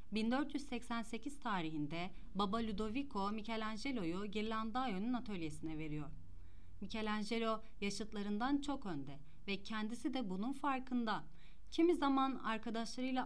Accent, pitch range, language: native, 170-245 Hz, Turkish